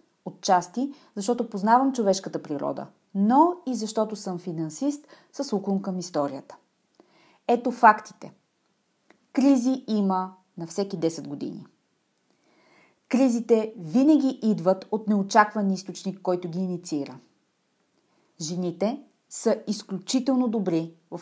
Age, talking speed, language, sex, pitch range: 30-49, 100 wpm, Bulgarian, female, 185-245 Hz